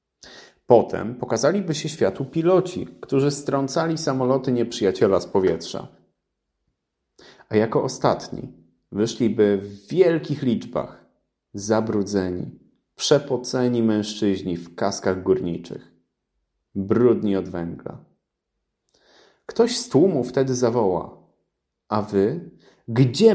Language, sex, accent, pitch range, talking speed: Polish, male, native, 100-140 Hz, 90 wpm